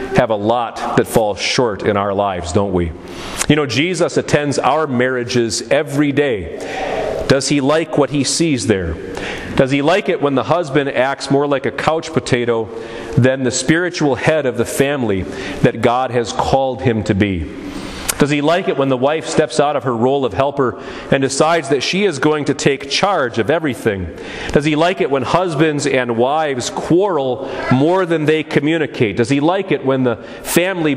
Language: English